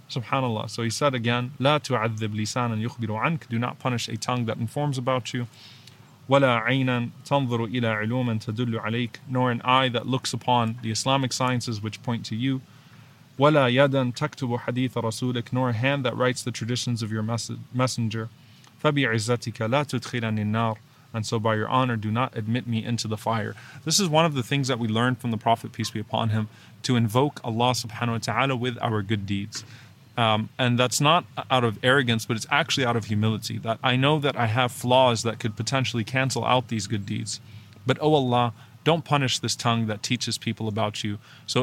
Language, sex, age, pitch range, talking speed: English, male, 20-39, 115-130 Hz, 190 wpm